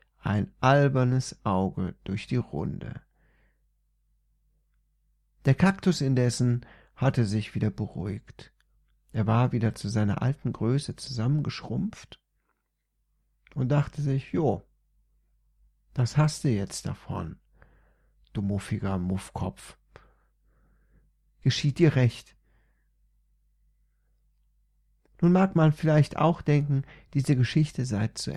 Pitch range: 110-150 Hz